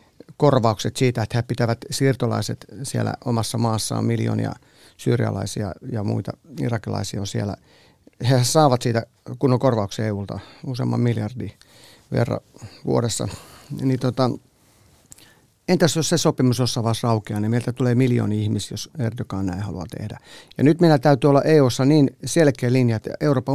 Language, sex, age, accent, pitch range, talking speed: Finnish, male, 50-69, native, 115-145 Hz, 145 wpm